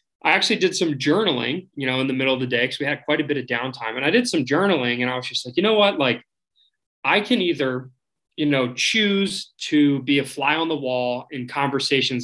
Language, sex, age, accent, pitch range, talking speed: English, male, 20-39, American, 125-160 Hz, 245 wpm